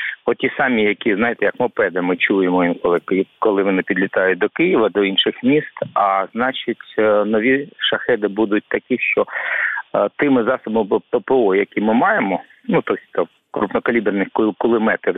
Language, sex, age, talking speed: Ukrainian, male, 50-69, 130 wpm